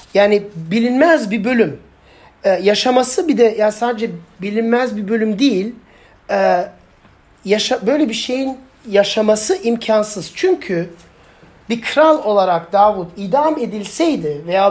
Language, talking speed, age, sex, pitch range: Turkish, 120 wpm, 40-59, male, 200-270 Hz